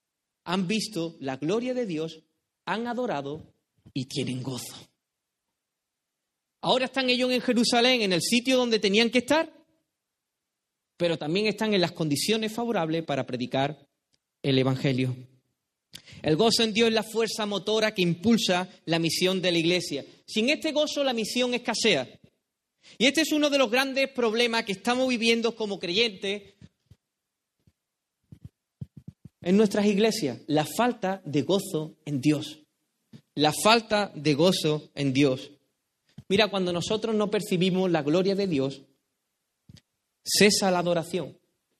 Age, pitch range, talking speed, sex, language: 30-49, 155-230 Hz, 135 wpm, male, Spanish